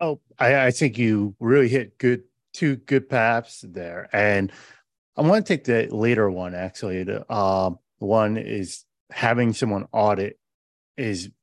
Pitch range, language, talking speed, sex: 105-135 Hz, English, 150 wpm, male